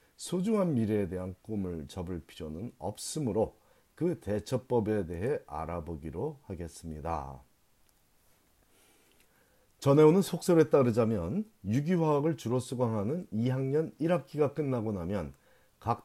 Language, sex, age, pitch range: Korean, male, 40-59, 95-140 Hz